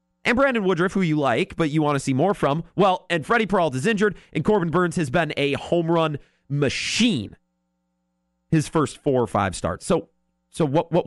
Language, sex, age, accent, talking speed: English, male, 30-49, American, 200 wpm